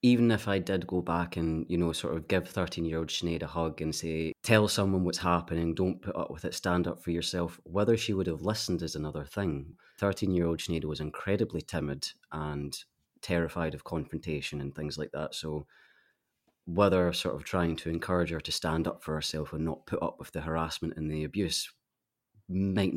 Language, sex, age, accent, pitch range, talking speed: English, male, 30-49, British, 80-95 Hz, 200 wpm